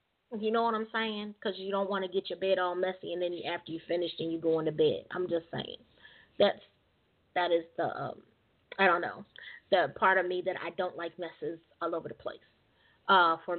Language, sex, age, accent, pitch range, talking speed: English, female, 20-39, American, 175-210 Hz, 230 wpm